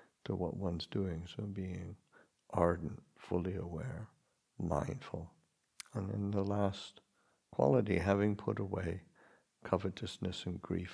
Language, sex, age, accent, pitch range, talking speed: English, male, 60-79, American, 90-110 Hz, 115 wpm